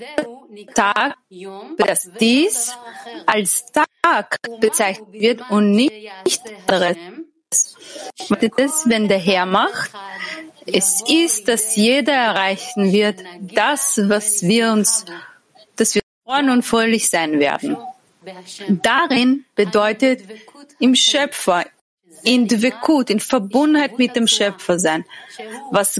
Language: German